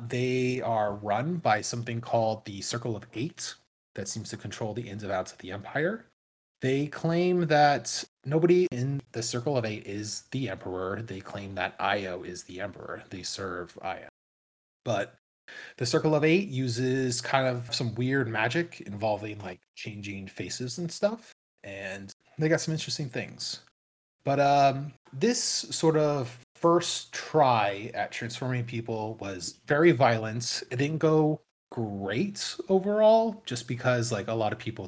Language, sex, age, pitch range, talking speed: English, male, 30-49, 105-145 Hz, 155 wpm